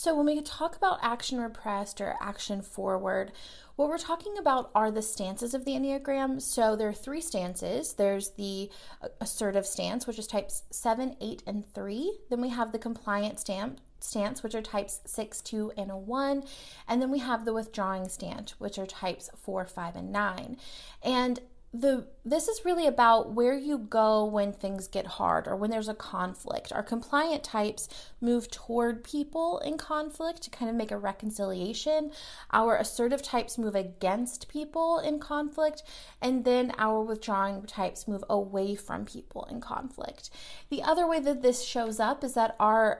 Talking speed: 175 wpm